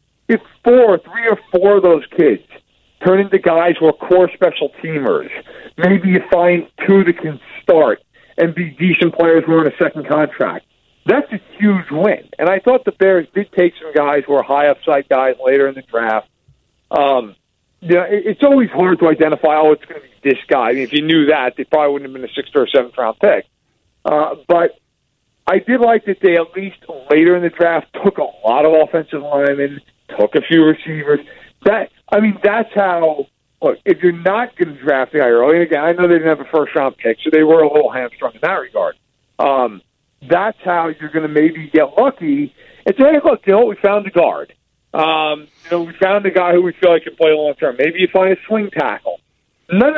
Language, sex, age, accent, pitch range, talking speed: English, male, 50-69, American, 150-195 Hz, 225 wpm